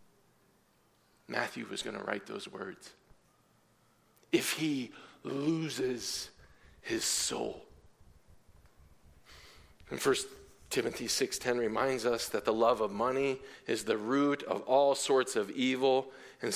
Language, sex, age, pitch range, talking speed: English, male, 40-59, 125-180 Hz, 115 wpm